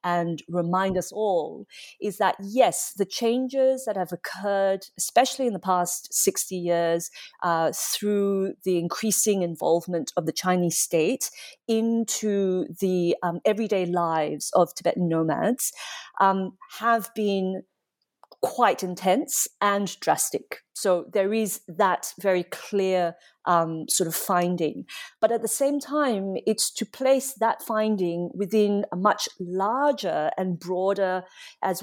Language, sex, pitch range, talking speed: English, female, 180-220 Hz, 130 wpm